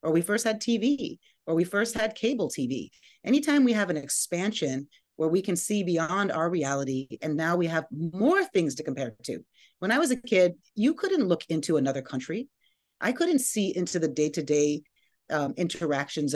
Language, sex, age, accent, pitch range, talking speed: English, female, 30-49, American, 160-225 Hz, 185 wpm